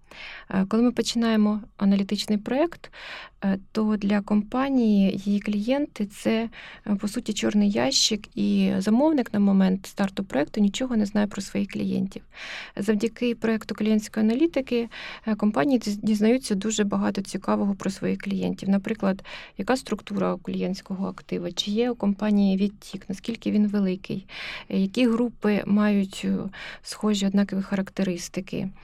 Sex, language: female, Ukrainian